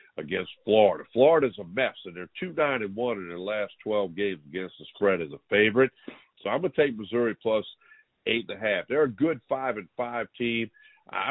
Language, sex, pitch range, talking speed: English, male, 95-115 Hz, 200 wpm